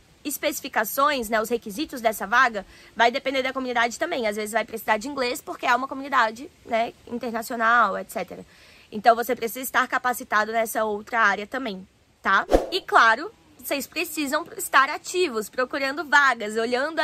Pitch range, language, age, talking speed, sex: 225-270 Hz, Portuguese, 20-39, 150 wpm, female